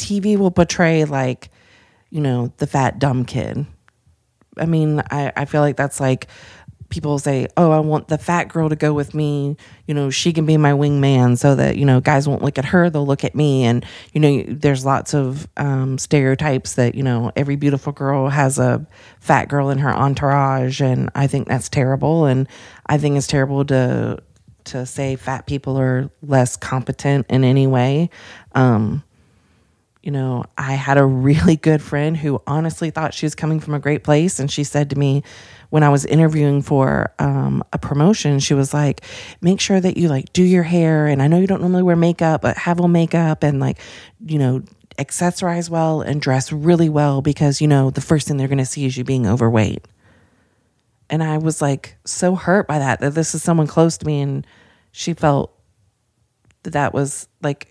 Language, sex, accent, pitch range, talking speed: English, female, American, 130-155 Hz, 200 wpm